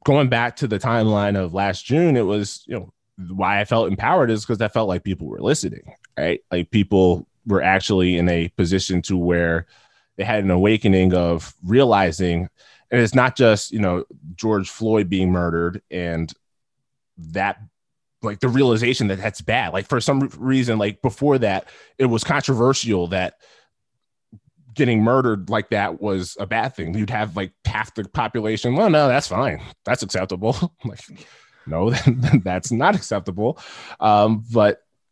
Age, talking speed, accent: 20-39, 165 wpm, American